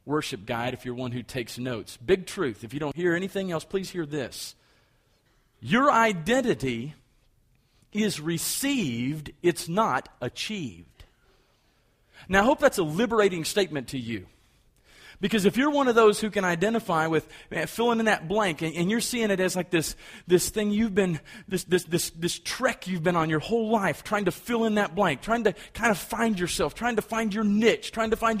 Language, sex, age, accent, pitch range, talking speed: English, male, 40-59, American, 160-230 Hz, 195 wpm